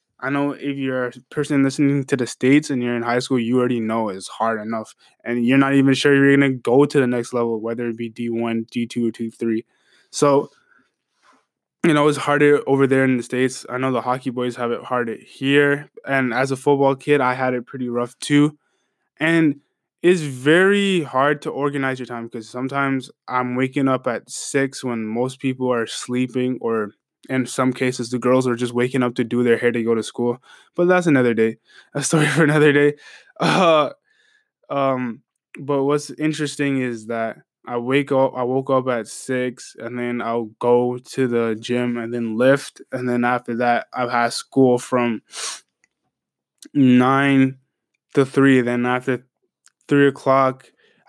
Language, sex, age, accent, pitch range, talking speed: English, male, 20-39, American, 120-140 Hz, 185 wpm